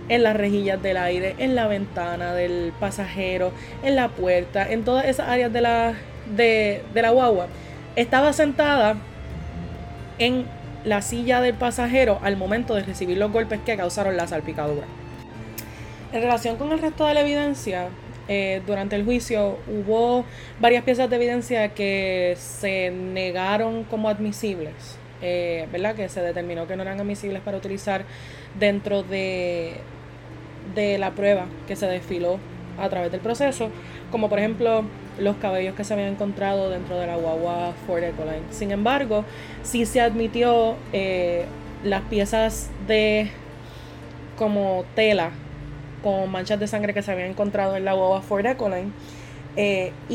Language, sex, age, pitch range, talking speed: Spanish, female, 20-39, 180-230 Hz, 150 wpm